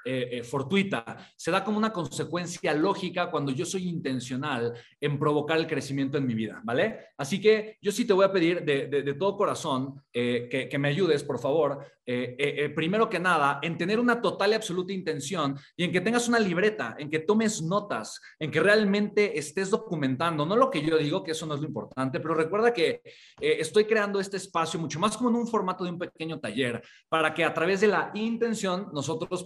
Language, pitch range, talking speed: Spanish, 140-195 Hz, 215 wpm